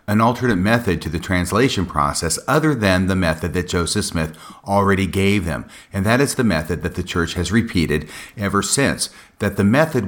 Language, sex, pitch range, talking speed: English, male, 85-115 Hz, 190 wpm